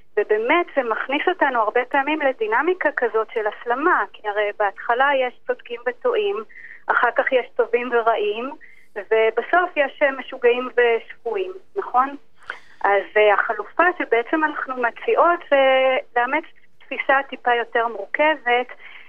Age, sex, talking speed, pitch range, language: 30-49, female, 115 wpm, 240-320 Hz, Hebrew